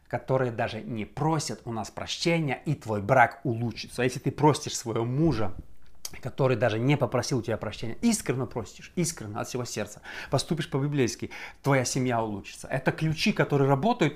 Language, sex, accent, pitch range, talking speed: Russian, male, native, 120-160 Hz, 160 wpm